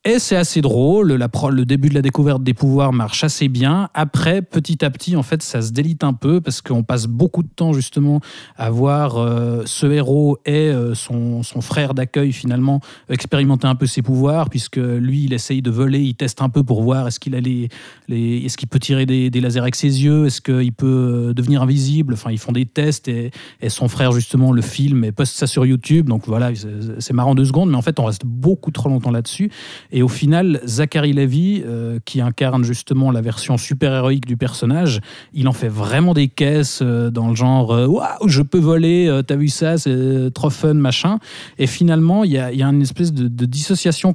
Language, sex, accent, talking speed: French, male, French, 225 wpm